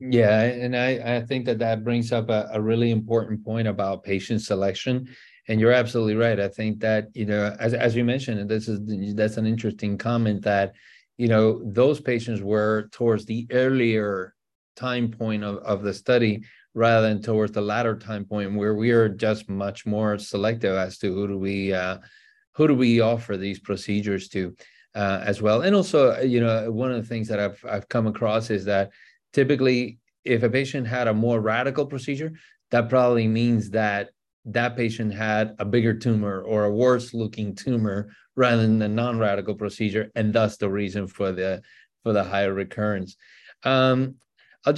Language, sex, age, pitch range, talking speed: English, male, 30-49, 105-120 Hz, 185 wpm